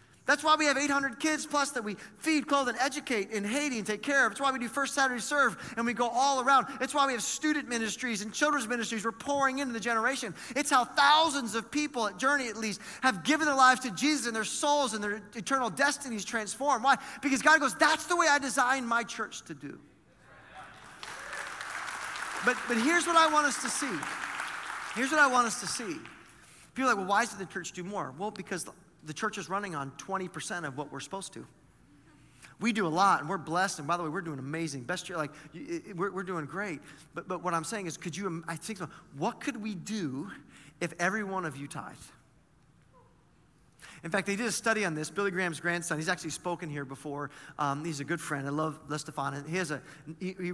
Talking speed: 225 wpm